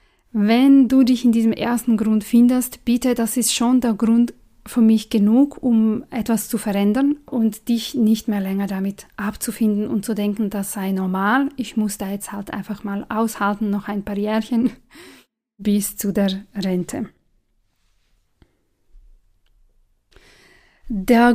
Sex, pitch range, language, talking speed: female, 205-245 Hz, German, 145 wpm